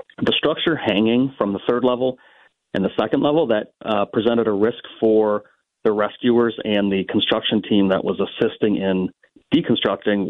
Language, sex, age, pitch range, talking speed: English, male, 40-59, 100-115 Hz, 165 wpm